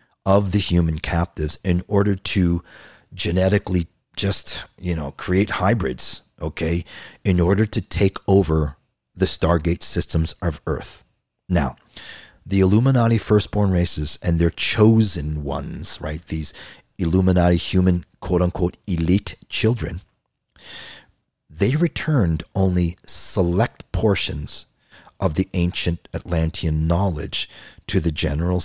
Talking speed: 110 wpm